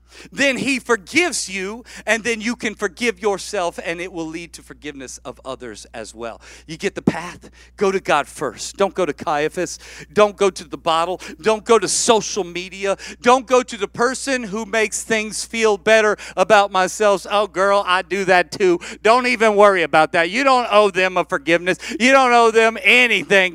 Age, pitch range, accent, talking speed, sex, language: 40-59, 175-255 Hz, American, 195 wpm, male, English